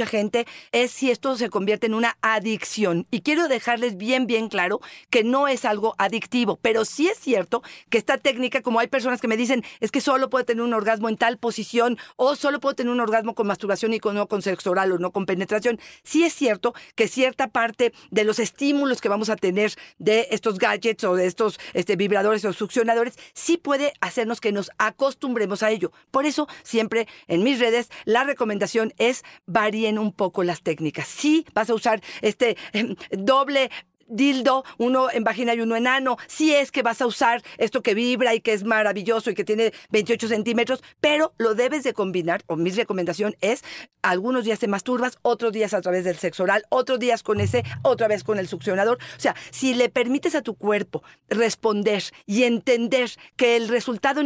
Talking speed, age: 200 wpm, 40-59